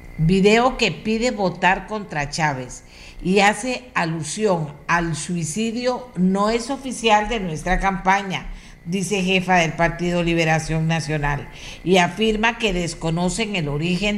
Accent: American